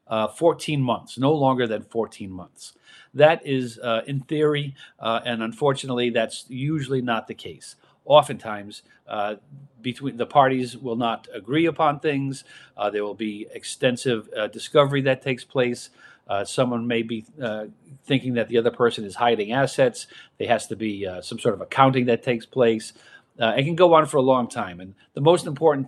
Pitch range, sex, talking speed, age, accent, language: 115-140 Hz, male, 180 wpm, 40-59, American, English